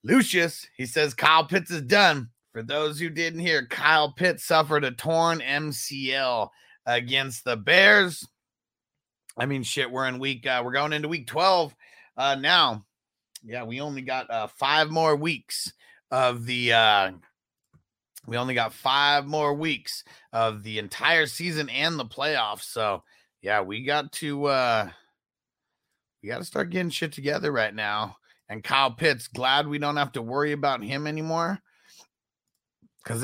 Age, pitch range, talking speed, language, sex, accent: 30-49, 125-170 Hz, 155 wpm, English, male, American